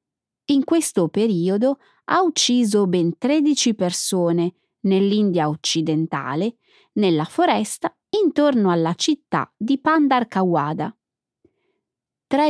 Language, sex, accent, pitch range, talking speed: Italian, female, native, 175-280 Hz, 85 wpm